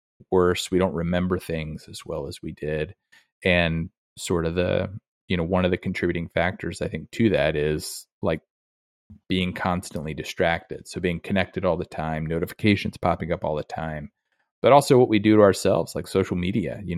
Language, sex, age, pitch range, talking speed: English, male, 30-49, 80-95 Hz, 185 wpm